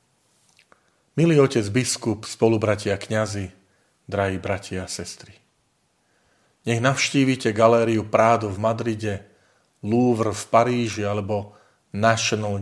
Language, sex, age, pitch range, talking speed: Slovak, male, 40-59, 105-125 Hz, 95 wpm